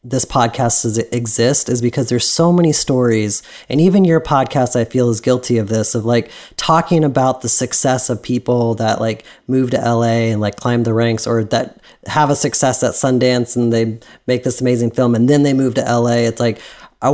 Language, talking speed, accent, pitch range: English, 210 wpm, American, 110-130 Hz